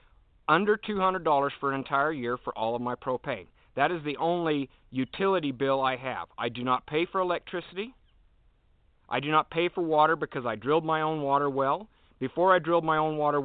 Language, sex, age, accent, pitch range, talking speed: English, male, 50-69, American, 130-160 Hz, 195 wpm